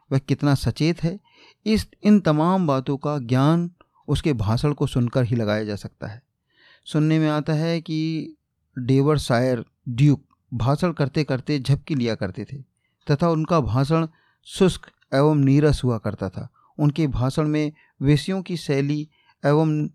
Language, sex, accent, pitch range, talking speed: Hindi, male, native, 130-160 Hz, 150 wpm